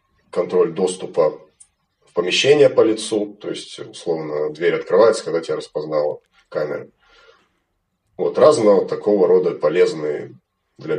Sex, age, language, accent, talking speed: male, 30-49, Russian, native, 115 wpm